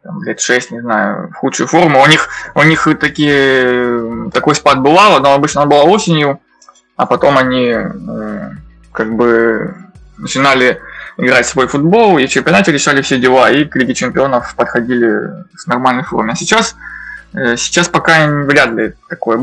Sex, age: male, 20-39